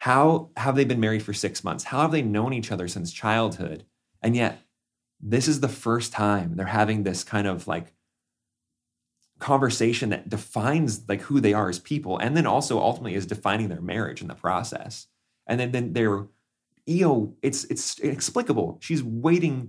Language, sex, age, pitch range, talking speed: English, male, 30-49, 100-130 Hz, 180 wpm